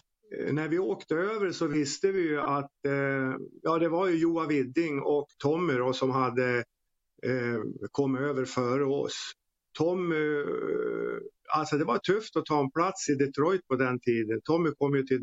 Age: 50-69